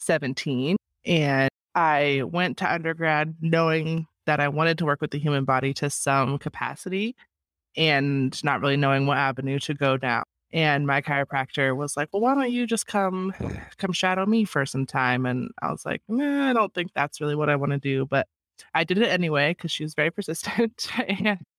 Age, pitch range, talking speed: 20-39, 135-165 Hz, 195 wpm